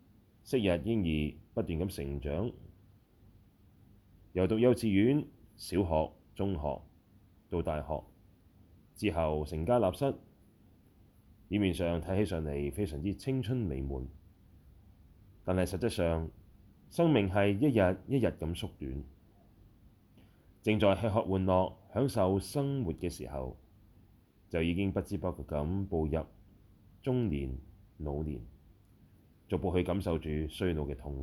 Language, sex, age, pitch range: Chinese, male, 30-49, 80-110 Hz